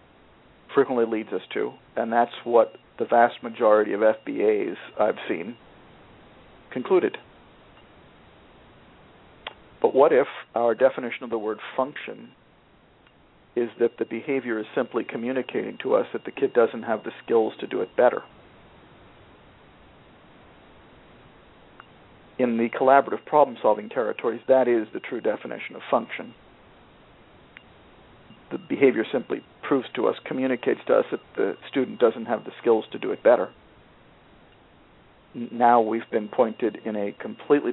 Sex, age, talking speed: male, 50-69, 135 wpm